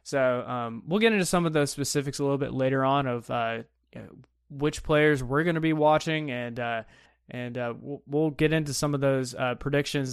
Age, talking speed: 20-39, 225 wpm